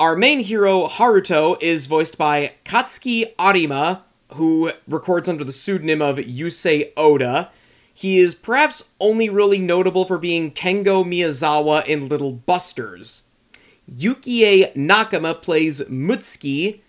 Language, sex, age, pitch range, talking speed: English, male, 30-49, 150-200 Hz, 120 wpm